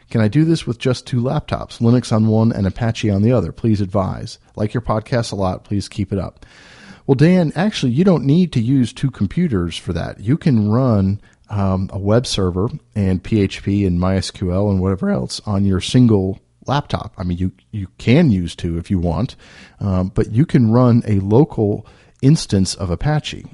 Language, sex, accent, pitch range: English, male, American, 95-120 Hz